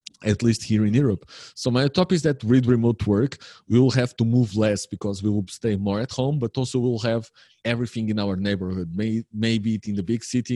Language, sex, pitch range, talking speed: English, male, 95-115 Hz, 225 wpm